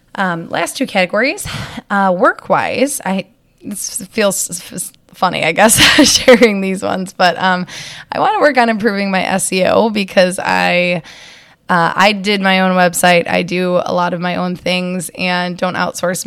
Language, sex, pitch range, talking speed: English, female, 175-210 Hz, 165 wpm